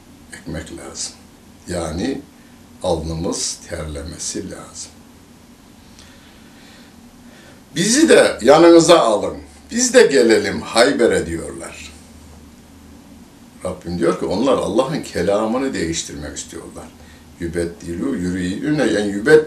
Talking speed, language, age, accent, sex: 85 wpm, Turkish, 60-79, native, male